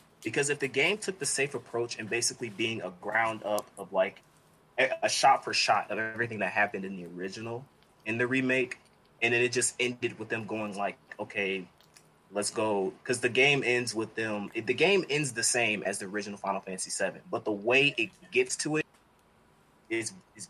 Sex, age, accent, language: male, 20-39, American, English